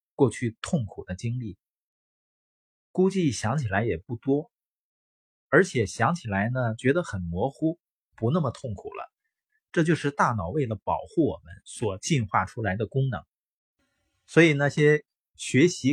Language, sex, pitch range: Chinese, male, 105-155 Hz